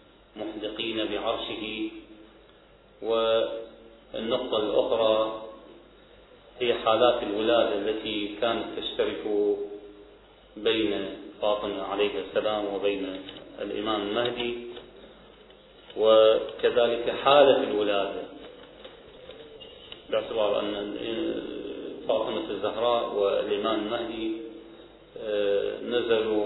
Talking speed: 60 wpm